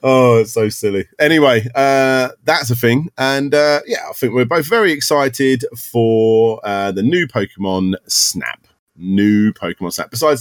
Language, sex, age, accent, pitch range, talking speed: English, male, 30-49, British, 105-150 Hz, 160 wpm